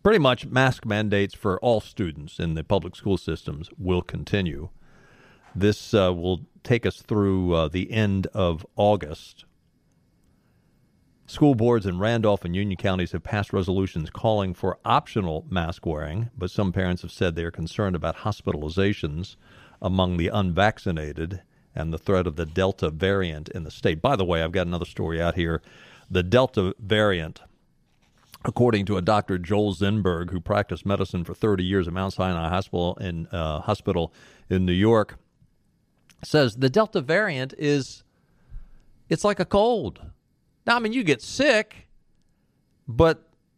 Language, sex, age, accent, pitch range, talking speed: English, male, 50-69, American, 90-120 Hz, 155 wpm